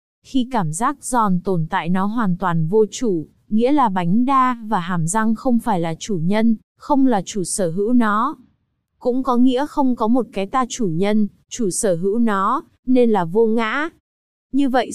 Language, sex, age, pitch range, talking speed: Vietnamese, female, 20-39, 185-250 Hz, 195 wpm